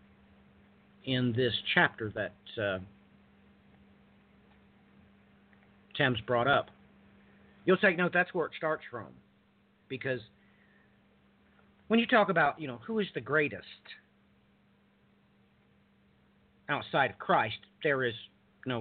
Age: 50-69